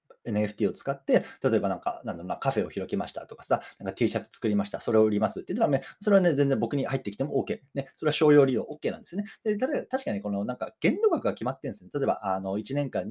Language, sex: Japanese, male